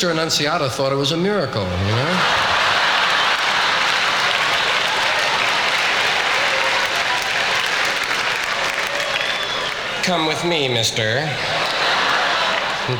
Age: 50-69